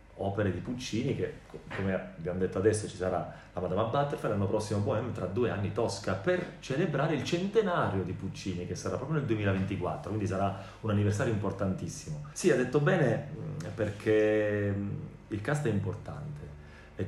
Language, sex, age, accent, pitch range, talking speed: Italian, male, 30-49, native, 95-135 Hz, 160 wpm